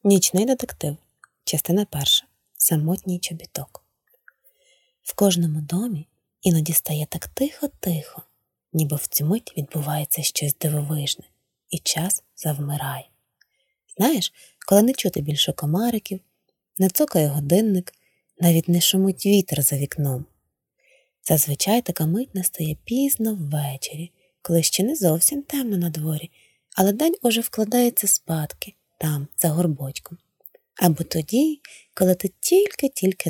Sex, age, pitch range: female, 20-39, 155-230 Hz